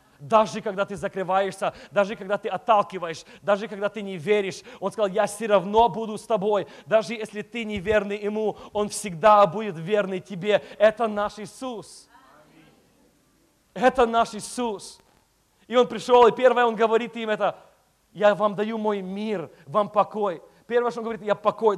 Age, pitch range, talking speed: 30-49, 180-220 Hz, 165 wpm